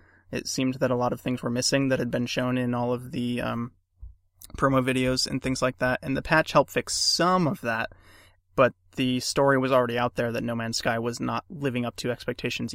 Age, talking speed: 20-39, 230 wpm